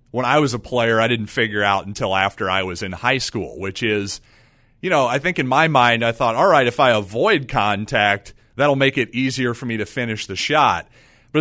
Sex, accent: male, American